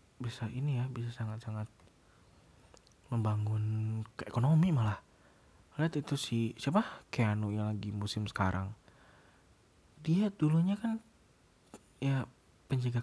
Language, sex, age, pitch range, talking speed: Indonesian, male, 20-39, 100-140 Hz, 105 wpm